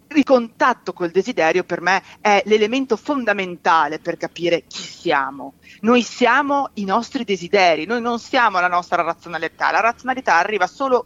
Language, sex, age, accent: English, female, 40-59, Italian